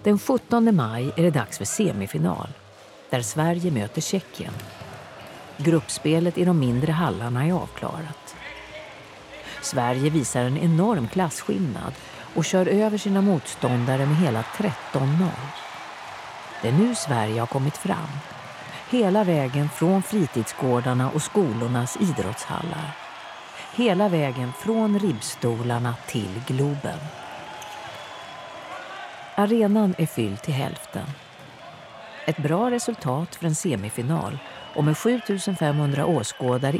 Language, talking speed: Swedish, 110 wpm